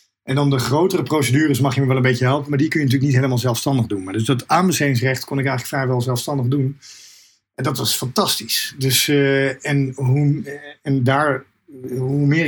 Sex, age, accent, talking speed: male, 50-69, Dutch, 190 wpm